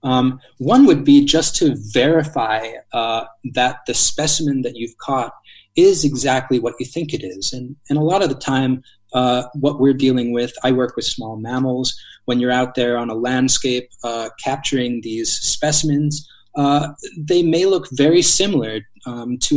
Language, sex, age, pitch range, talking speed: English, male, 20-39, 115-140 Hz, 175 wpm